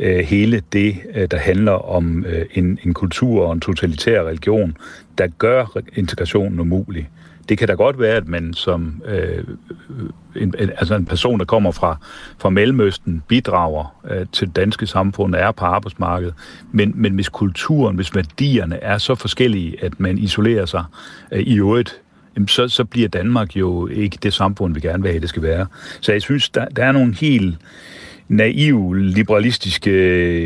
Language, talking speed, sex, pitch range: Danish, 170 wpm, male, 90-110 Hz